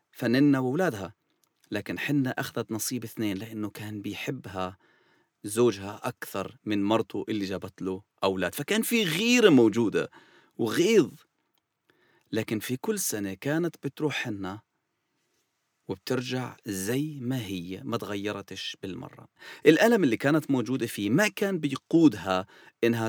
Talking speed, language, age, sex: 120 wpm, English, 40-59, male